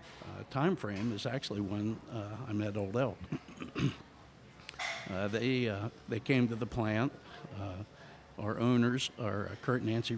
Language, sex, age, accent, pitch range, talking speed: English, male, 60-79, American, 105-125 Hz, 160 wpm